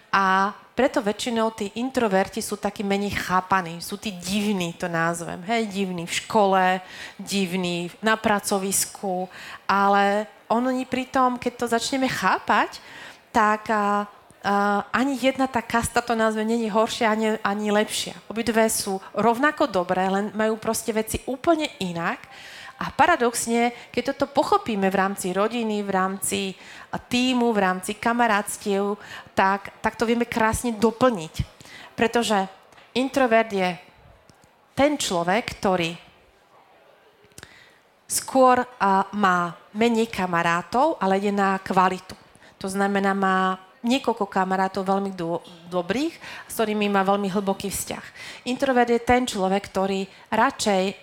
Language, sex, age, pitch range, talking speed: Slovak, female, 30-49, 190-235 Hz, 125 wpm